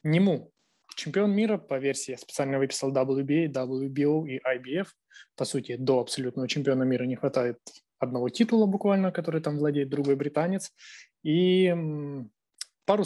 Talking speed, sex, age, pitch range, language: 140 wpm, male, 20-39, 130-170 Hz, Ukrainian